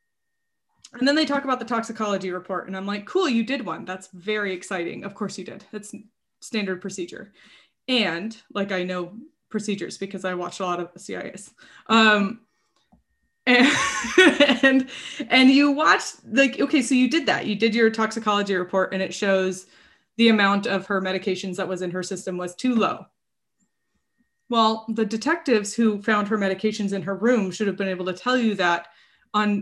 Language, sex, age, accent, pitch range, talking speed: English, female, 20-39, American, 195-255 Hz, 180 wpm